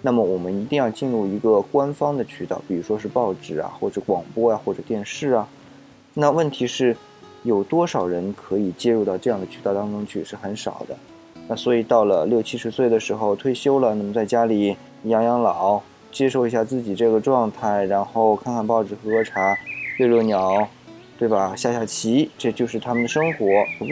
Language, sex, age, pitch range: Chinese, male, 20-39, 105-130 Hz